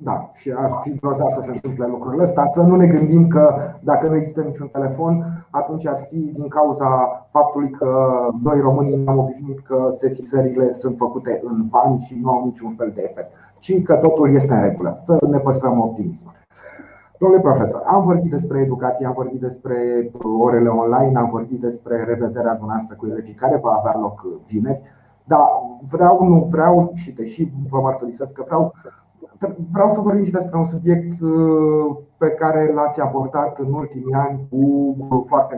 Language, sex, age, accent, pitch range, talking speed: Romanian, male, 30-49, native, 125-160 Hz, 170 wpm